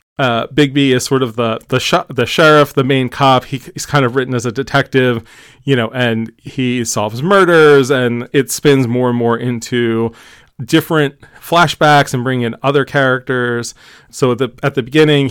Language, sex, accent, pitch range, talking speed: English, male, American, 120-145 Hz, 180 wpm